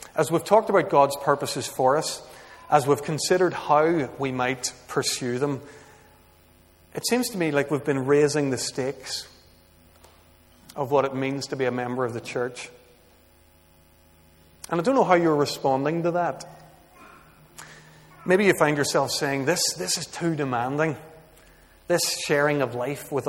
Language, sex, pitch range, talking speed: English, male, 130-160 Hz, 155 wpm